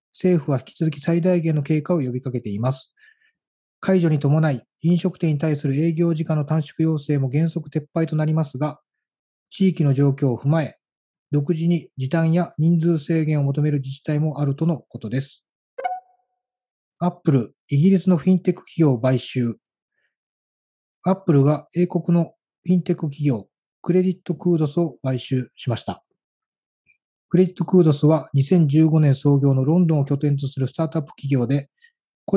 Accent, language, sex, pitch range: native, Japanese, male, 140-175 Hz